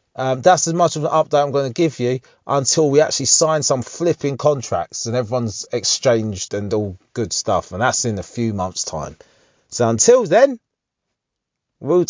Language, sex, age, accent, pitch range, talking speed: English, male, 30-49, British, 105-155 Hz, 185 wpm